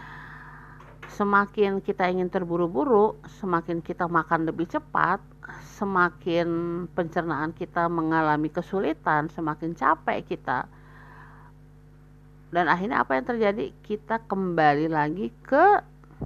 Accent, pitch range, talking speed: native, 145-195 Hz, 95 wpm